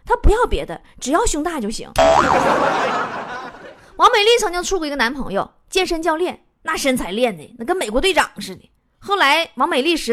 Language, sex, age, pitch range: Chinese, female, 20-39, 240-400 Hz